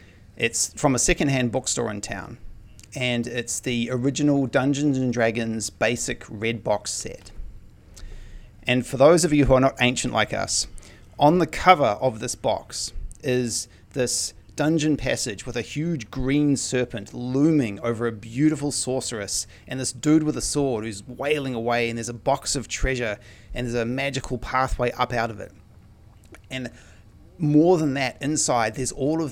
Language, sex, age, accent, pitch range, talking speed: English, male, 30-49, Australian, 105-130 Hz, 165 wpm